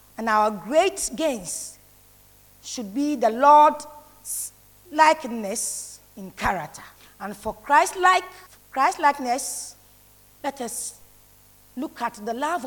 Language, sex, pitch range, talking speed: English, female, 240-330 Hz, 100 wpm